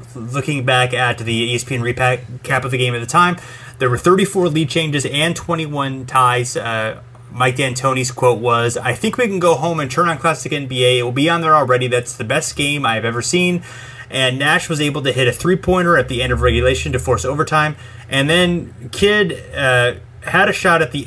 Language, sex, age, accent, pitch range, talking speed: English, male, 30-49, American, 120-155 Hz, 215 wpm